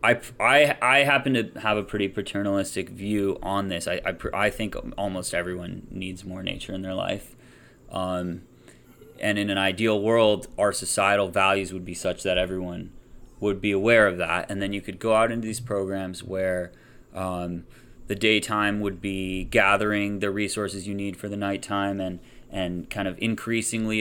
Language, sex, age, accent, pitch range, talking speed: English, male, 30-49, American, 95-120 Hz, 175 wpm